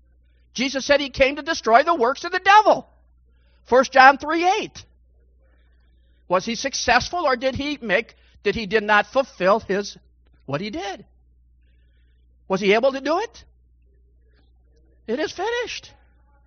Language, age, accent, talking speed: English, 50-69, American, 140 wpm